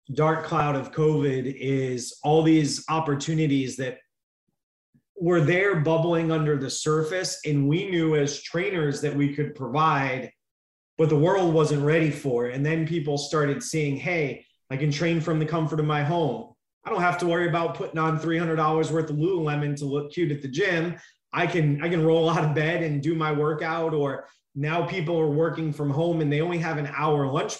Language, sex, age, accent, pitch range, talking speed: English, male, 30-49, American, 140-165 Hz, 195 wpm